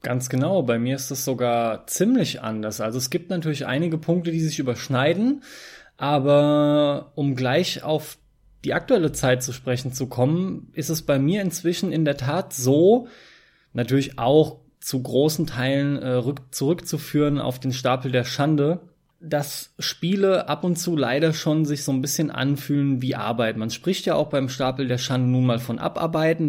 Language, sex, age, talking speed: German, male, 20-39, 170 wpm